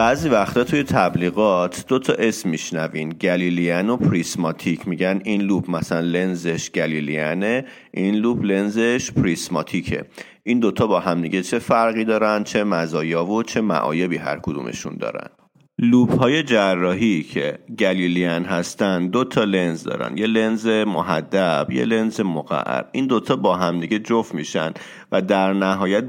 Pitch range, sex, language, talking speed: 90-110 Hz, male, Persian, 140 wpm